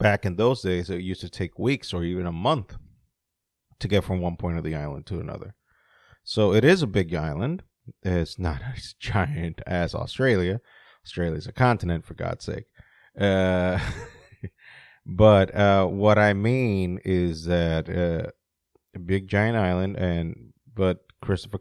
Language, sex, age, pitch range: English, male, 30-49, 85-100 Hz